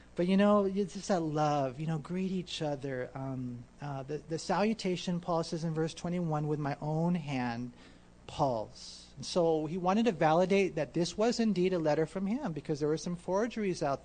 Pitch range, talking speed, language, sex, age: 140-205 Hz, 200 wpm, English, male, 40-59